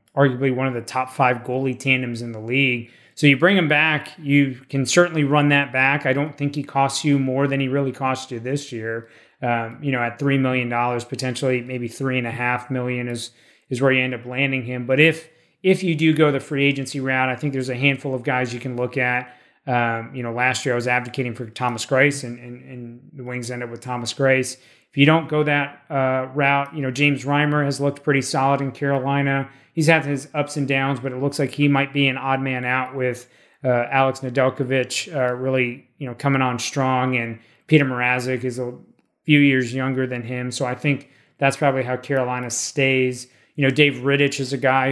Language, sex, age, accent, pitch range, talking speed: English, male, 30-49, American, 125-140 Hz, 220 wpm